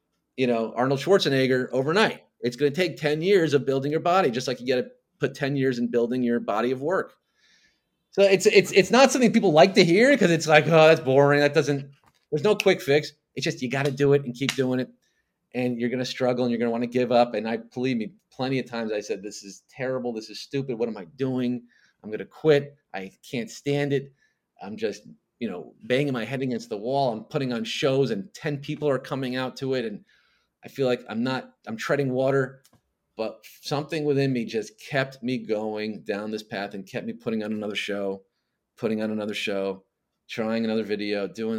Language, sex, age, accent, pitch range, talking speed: English, male, 30-49, American, 110-145 Hz, 230 wpm